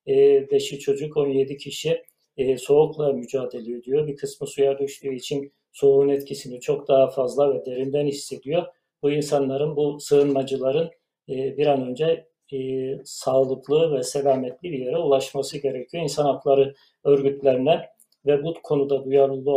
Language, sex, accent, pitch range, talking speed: Turkish, male, native, 135-150 Hz, 125 wpm